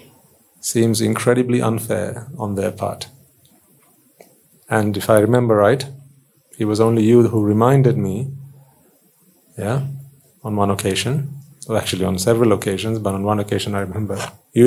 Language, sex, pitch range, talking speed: English, male, 105-130 Hz, 140 wpm